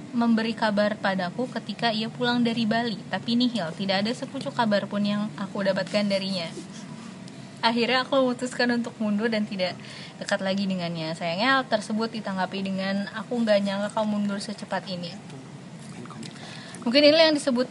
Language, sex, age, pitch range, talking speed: Indonesian, female, 20-39, 190-225 Hz, 155 wpm